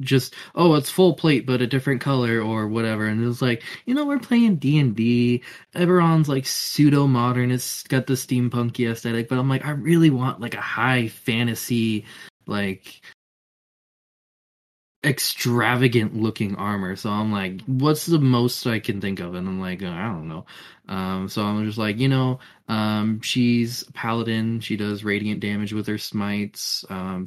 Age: 20-39